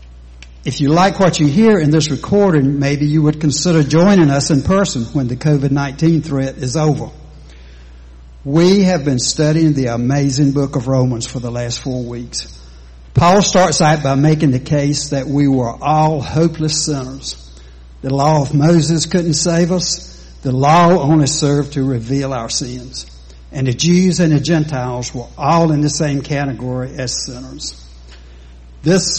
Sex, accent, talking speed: male, American, 165 wpm